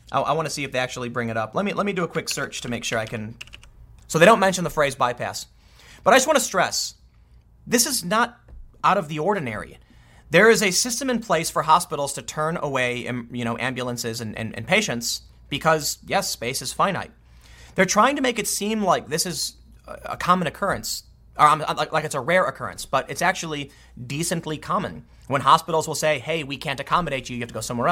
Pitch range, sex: 125-205 Hz, male